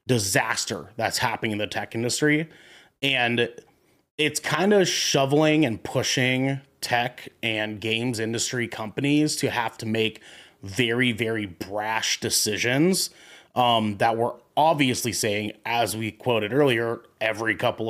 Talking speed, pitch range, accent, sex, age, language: 125 wpm, 110-135 Hz, American, male, 30-49, English